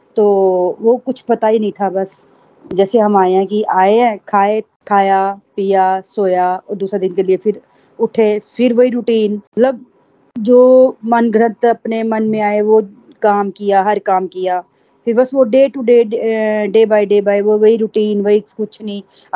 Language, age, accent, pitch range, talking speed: Hindi, 20-39, native, 200-250 Hz, 100 wpm